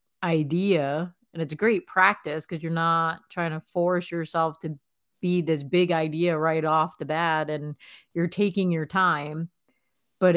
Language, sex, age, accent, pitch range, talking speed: English, female, 30-49, American, 160-180 Hz, 160 wpm